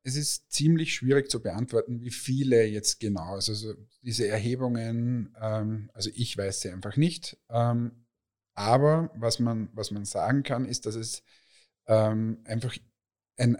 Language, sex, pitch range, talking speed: German, male, 110-130 Hz, 130 wpm